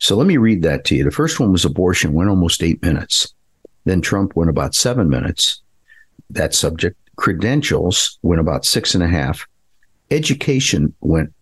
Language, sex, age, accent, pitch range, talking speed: English, male, 50-69, American, 80-105 Hz, 175 wpm